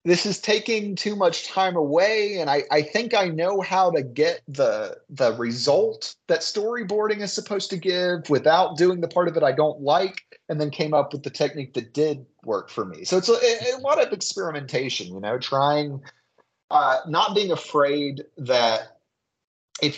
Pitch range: 140-210 Hz